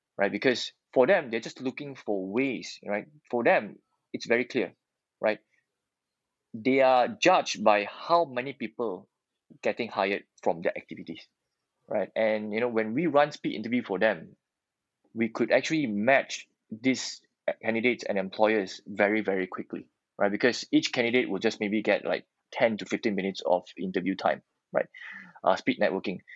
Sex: male